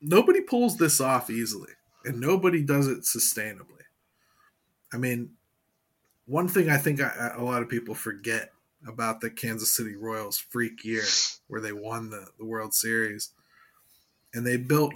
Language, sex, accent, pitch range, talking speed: English, male, American, 110-130 Hz, 150 wpm